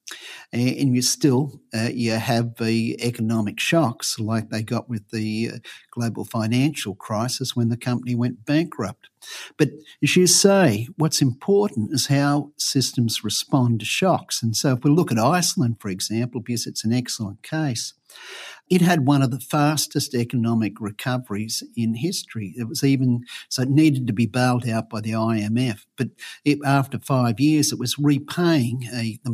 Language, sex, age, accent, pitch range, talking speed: English, male, 50-69, Australian, 115-145 Hz, 170 wpm